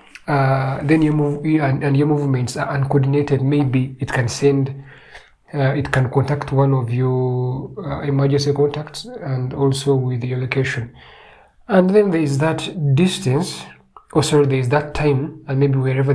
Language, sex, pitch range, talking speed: English, male, 135-150 Hz, 155 wpm